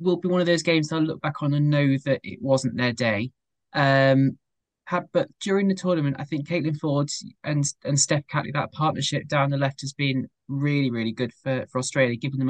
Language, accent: English, British